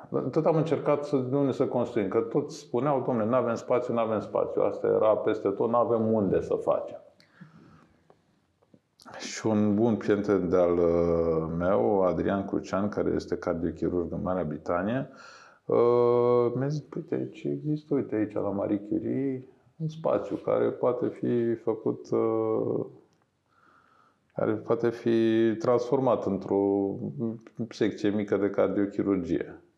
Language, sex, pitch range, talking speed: Romanian, male, 90-120 Hz, 130 wpm